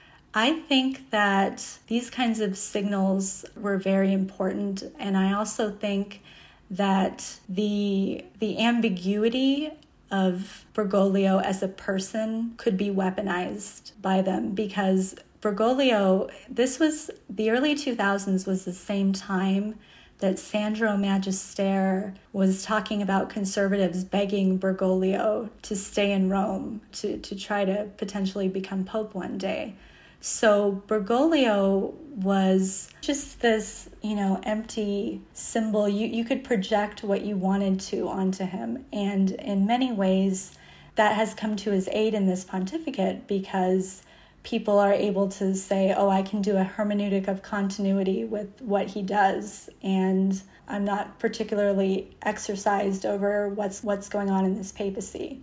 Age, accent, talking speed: 30-49, American, 135 wpm